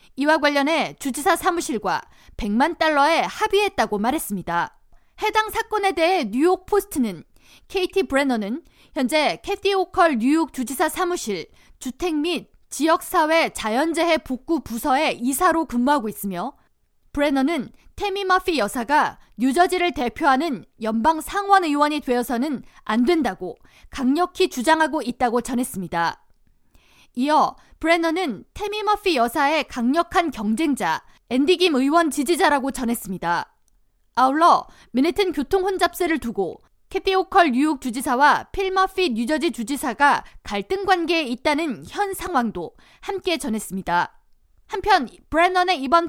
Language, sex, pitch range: Korean, female, 255-360 Hz